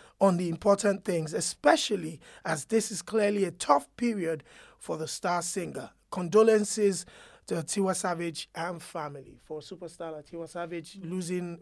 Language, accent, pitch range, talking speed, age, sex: English, Nigerian, 180-240 Hz, 140 wpm, 30-49, male